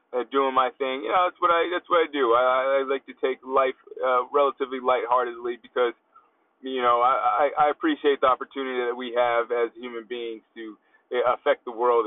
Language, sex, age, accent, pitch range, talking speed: English, male, 30-49, American, 120-150 Hz, 200 wpm